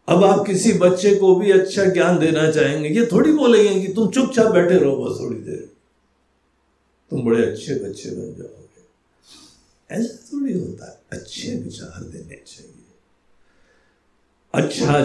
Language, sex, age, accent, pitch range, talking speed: Hindi, male, 60-79, native, 145-225 Hz, 150 wpm